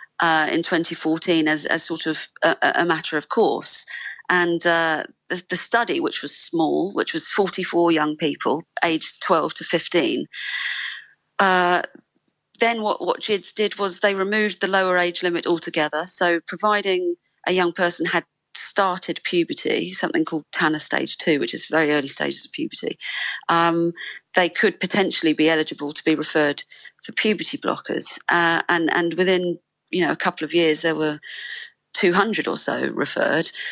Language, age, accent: English, 40-59, British